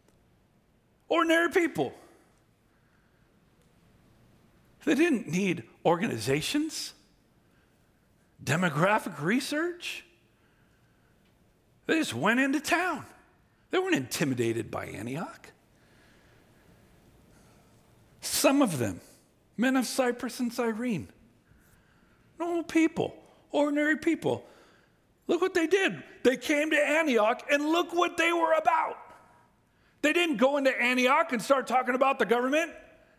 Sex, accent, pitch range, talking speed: male, American, 200-310 Hz, 100 wpm